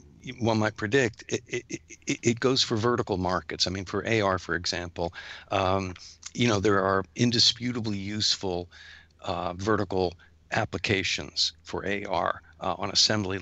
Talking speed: 140 wpm